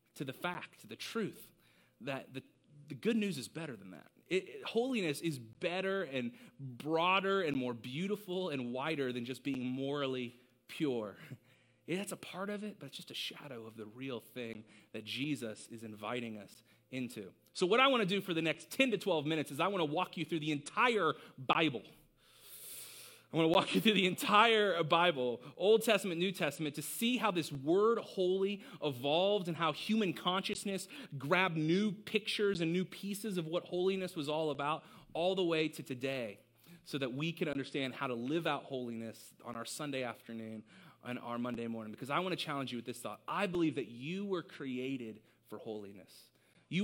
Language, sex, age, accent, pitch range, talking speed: English, male, 30-49, American, 125-185 Hz, 195 wpm